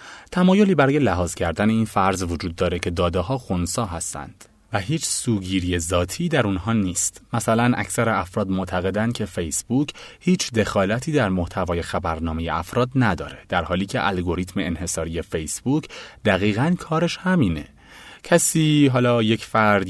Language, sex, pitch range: Persian, male, 85-125 Hz